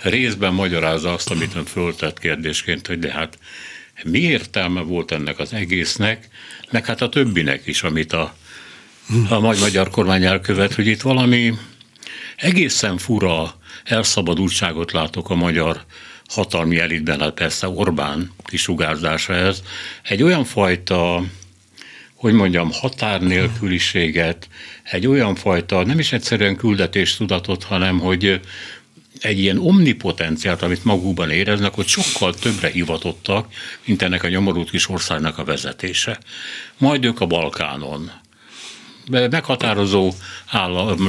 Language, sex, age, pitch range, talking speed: Hungarian, male, 60-79, 85-110 Hz, 125 wpm